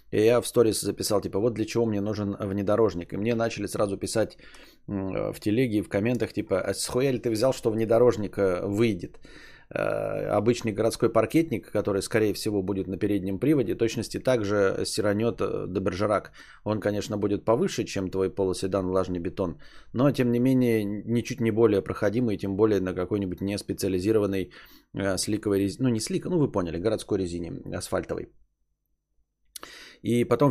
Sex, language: male, Bulgarian